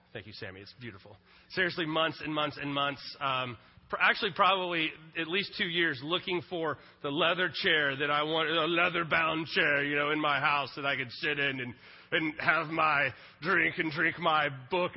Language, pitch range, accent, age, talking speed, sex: English, 135-180 Hz, American, 30-49, 190 wpm, male